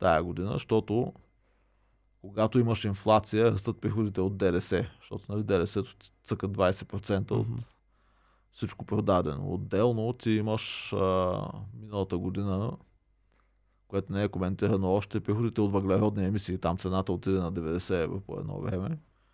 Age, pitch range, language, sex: 20-39, 95-110 Hz, Bulgarian, male